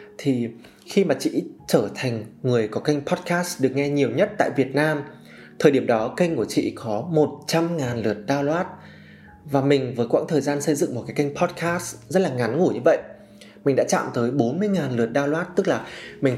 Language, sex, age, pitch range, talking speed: Vietnamese, male, 20-39, 115-160 Hz, 200 wpm